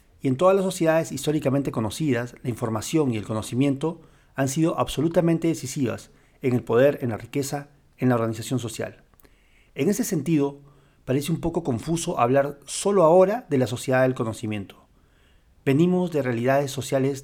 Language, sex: Spanish, male